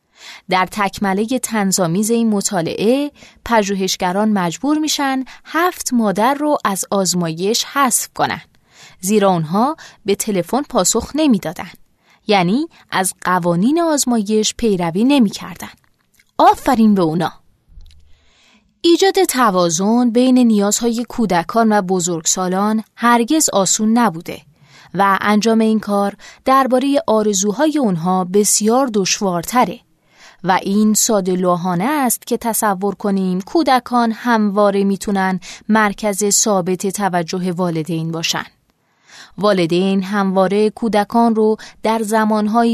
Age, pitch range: 20-39, 185-235 Hz